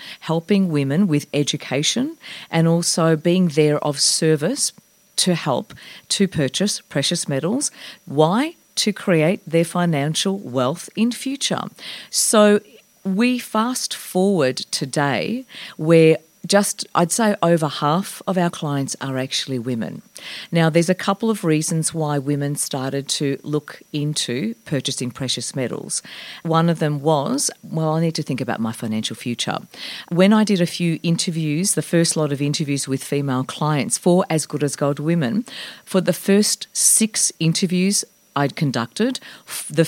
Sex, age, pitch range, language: female, 40-59, 145-195 Hz, English